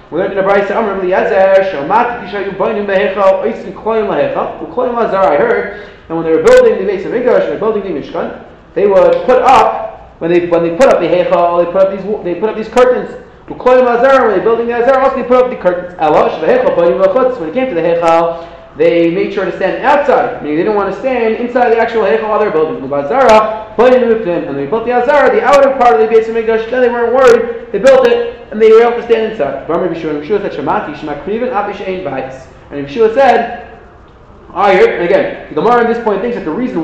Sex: male